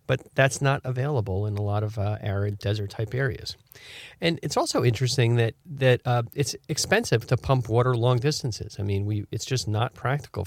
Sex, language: male, English